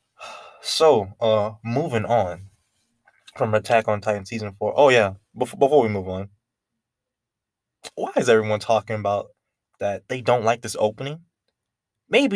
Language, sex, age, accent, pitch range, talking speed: English, male, 20-39, American, 105-125 Hz, 140 wpm